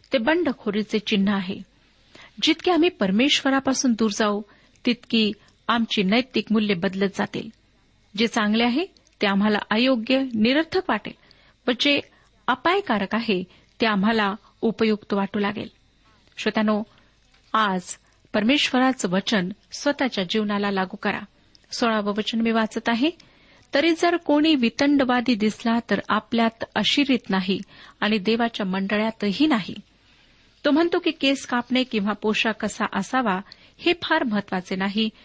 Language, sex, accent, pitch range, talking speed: Marathi, female, native, 205-255 Hz, 120 wpm